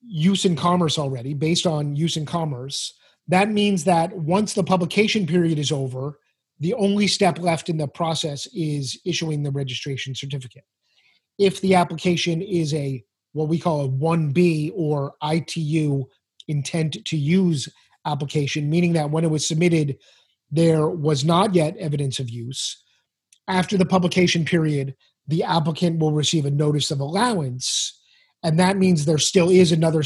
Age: 30-49